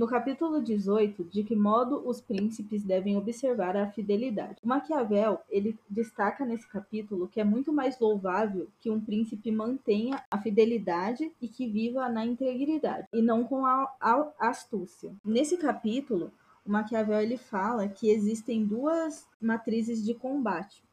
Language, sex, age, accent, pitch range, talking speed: Portuguese, female, 10-29, Brazilian, 210-250 Hz, 150 wpm